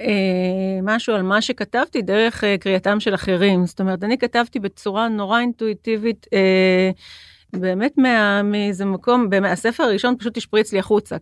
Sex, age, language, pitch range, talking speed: female, 40-59, Hebrew, 195-235 Hz, 140 wpm